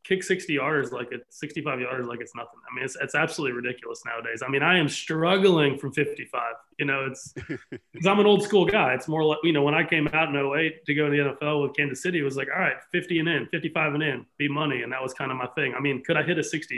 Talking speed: 285 wpm